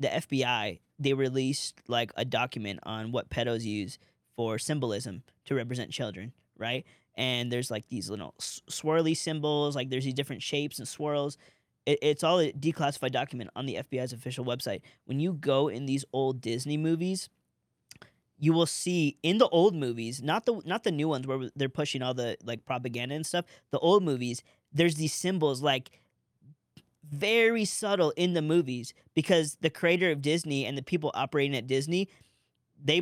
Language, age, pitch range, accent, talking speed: English, 20-39, 125-160 Hz, American, 175 wpm